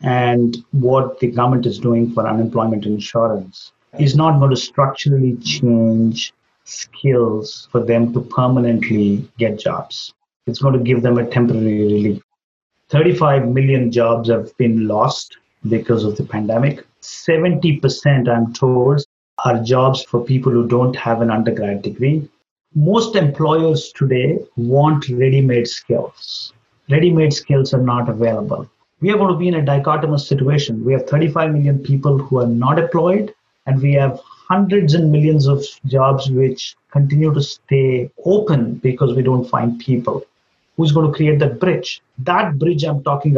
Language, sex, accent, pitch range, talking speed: English, male, Indian, 120-150 Hz, 150 wpm